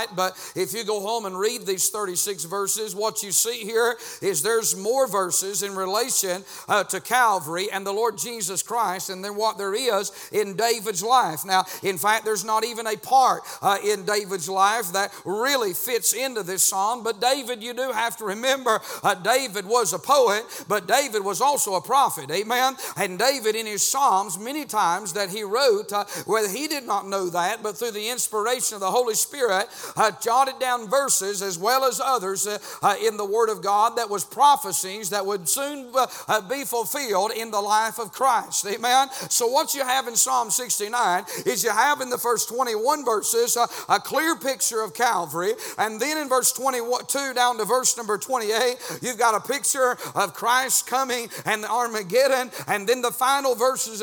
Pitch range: 205-260 Hz